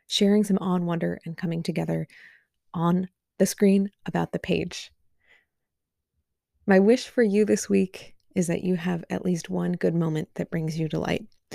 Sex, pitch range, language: female, 170-200 Hz, English